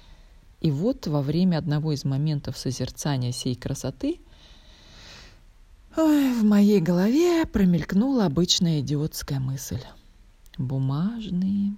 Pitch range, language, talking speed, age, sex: 150-225 Hz, Russian, 95 wpm, 20-39, female